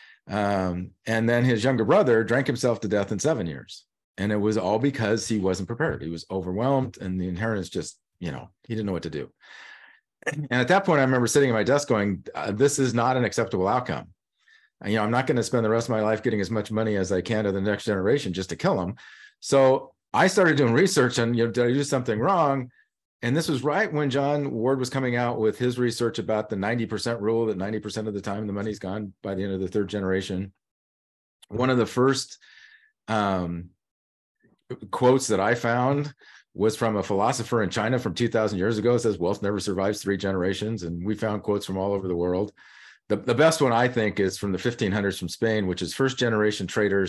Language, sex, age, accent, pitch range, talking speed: English, male, 40-59, American, 100-125 Hz, 225 wpm